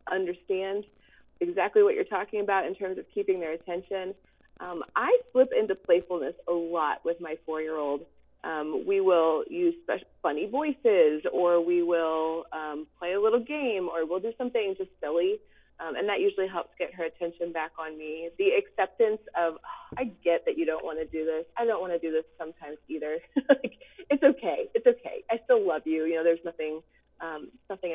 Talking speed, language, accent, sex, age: 185 wpm, English, American, female, 30-49